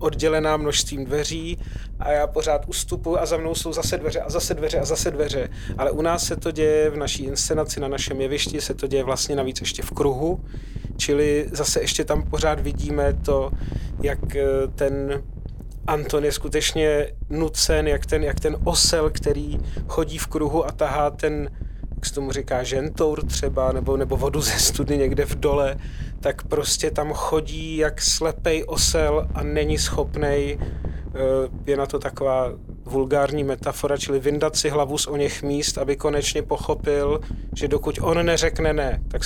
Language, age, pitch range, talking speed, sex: Czech, 30-49, 110-150 Hz, 170 wpm, male